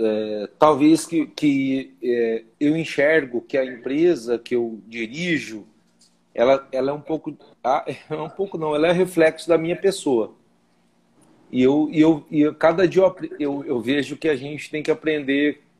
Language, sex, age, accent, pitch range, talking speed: Portuguese, male, 40-59, Brazilian, 135-175 Hz, 175 wpm